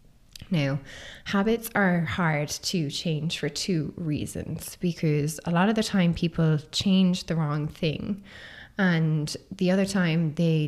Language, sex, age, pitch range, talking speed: English, female, 20-39, 145-175 Hz, 140 wpm